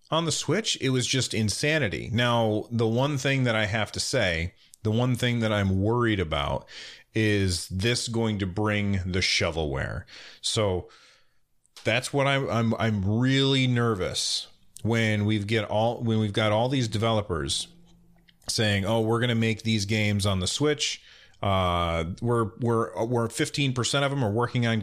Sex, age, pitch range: male, 30-49, 95-120 Hz